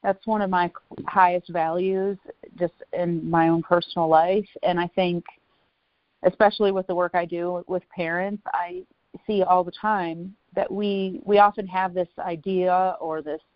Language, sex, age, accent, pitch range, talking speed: English, female, 40-59, American, 170-195 Hz, 165 wpm